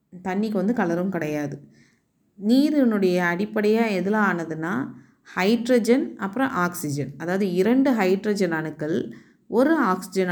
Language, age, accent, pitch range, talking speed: Tamil, 30-49, native, 170-215 Hz, 100 wpm